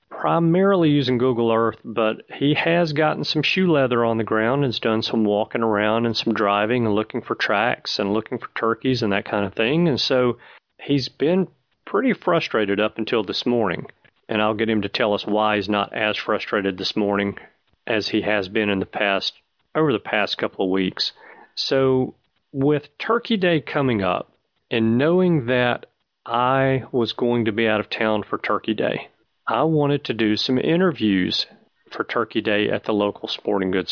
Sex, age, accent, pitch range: male, 40-59, American, 110-145 Hz